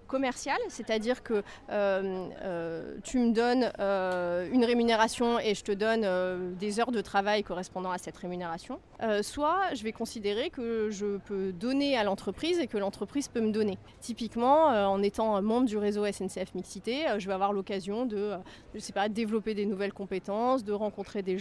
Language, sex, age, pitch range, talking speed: French, female, 30-49, 200-245 Hz, 190 wpm